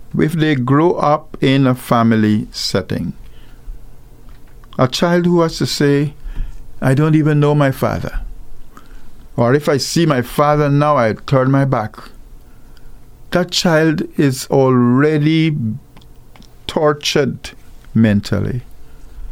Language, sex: English, male